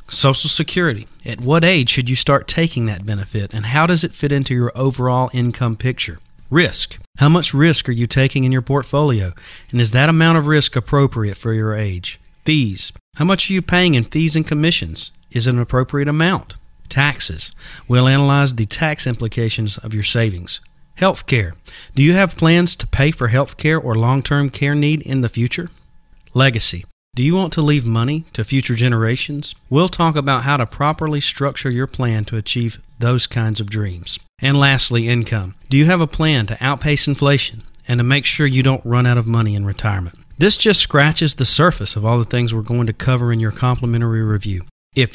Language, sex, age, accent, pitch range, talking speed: English, male, 40-59, American, 115-145 Hz, 195 wpm